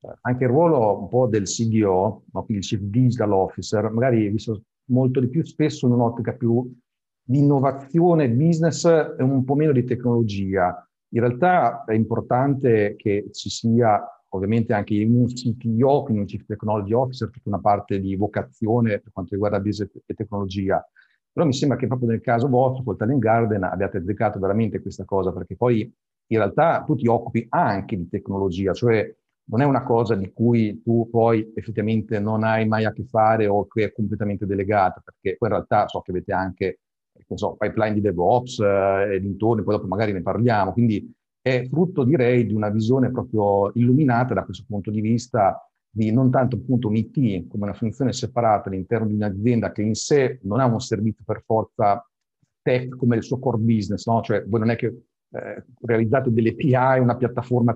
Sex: male